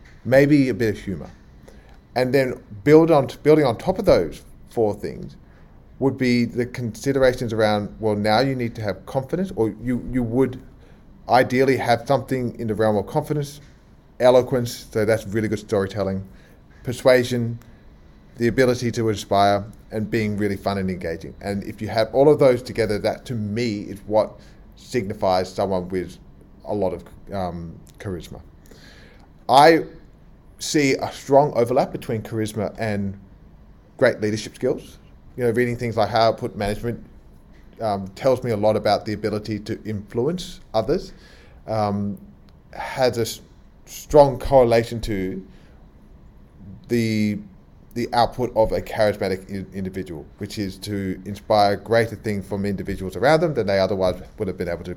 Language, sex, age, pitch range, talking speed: English, male, 30-49, 100-125 Hz, 155 wpm